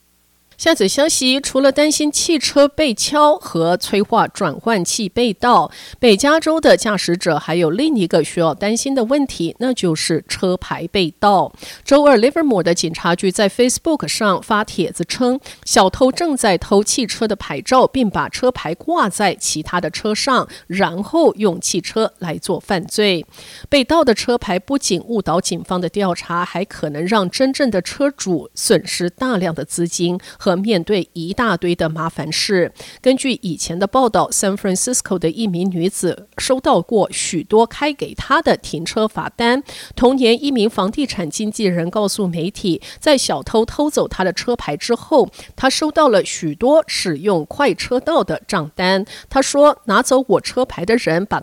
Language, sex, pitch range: English, female, 180-260 Hz